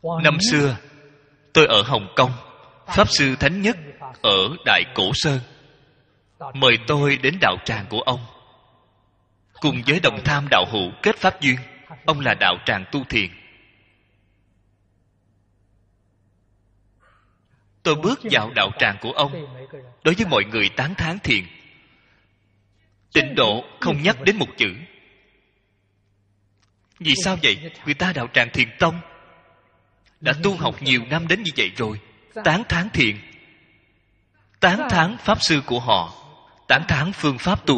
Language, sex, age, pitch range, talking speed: Vietnamese, male, 20-39, 100-145 Hz, 140 wpm